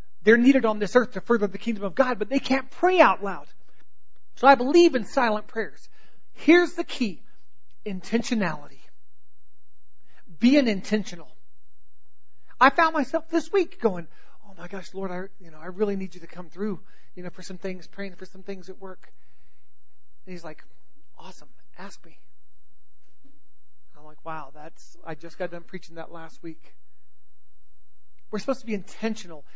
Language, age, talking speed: English, 40-59, 170 wpm